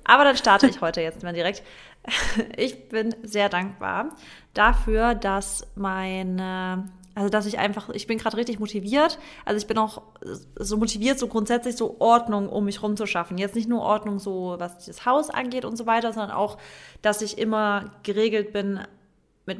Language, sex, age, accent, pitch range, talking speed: German, female, 20-39, German, 195-235 Hz, 175 wpm